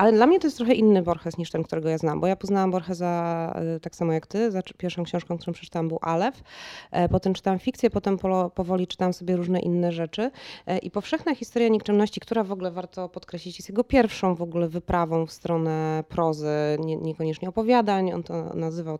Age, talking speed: 20-39, 195 wpm